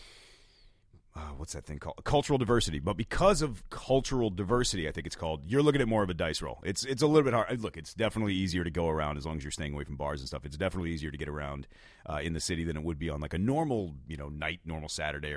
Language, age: English, 30-49